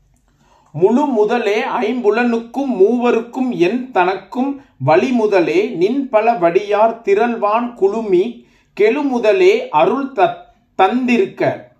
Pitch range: 195-275 Hz